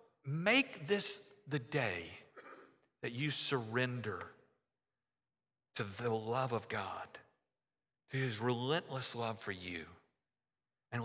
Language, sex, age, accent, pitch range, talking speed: English, male, 50-69, American, 110-145 Hz, 105 wpm